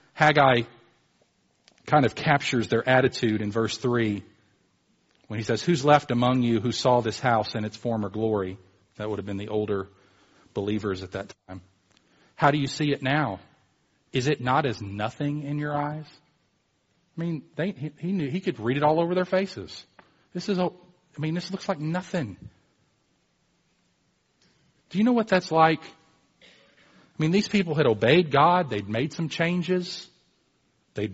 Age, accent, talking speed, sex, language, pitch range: 40-59, American, 170 wpm, male, English, 110-160 Hz